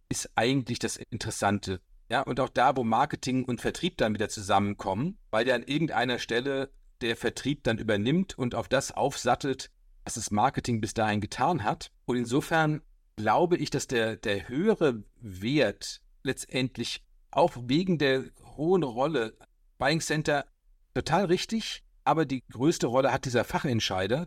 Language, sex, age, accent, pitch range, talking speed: German, male, 50-69, German, 115-160 Hz, 155 wpm